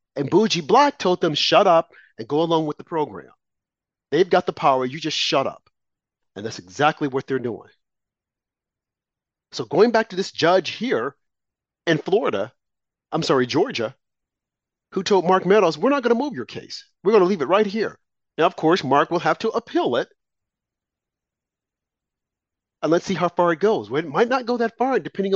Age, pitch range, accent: 40-59, 145-205 Hz, American